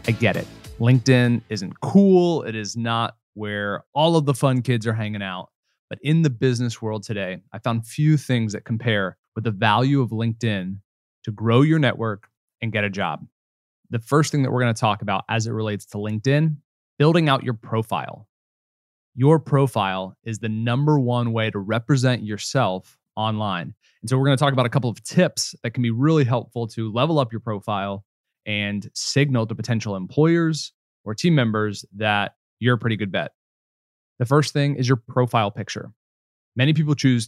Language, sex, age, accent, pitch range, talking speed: English, male, 20-39, American, 105-130 Hz, 190 wpm